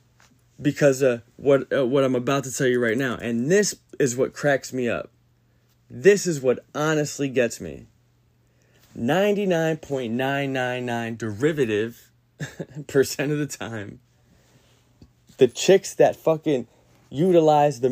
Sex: male